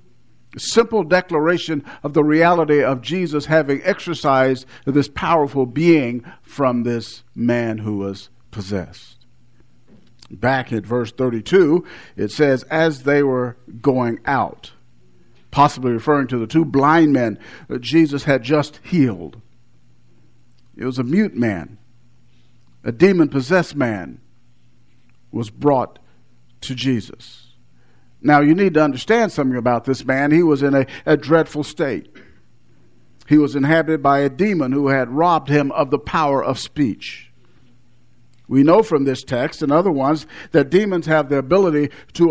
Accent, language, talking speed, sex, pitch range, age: American, English, 140 wpm, male, 120-150 Hz, 50-69